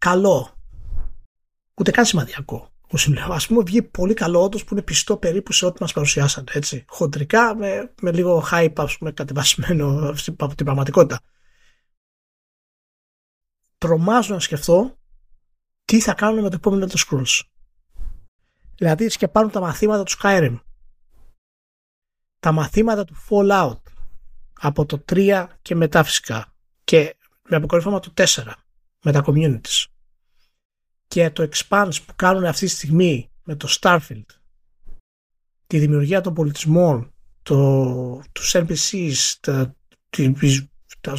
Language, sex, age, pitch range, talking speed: Greek, male, 30-49, 140-185 Hz, 125 wpm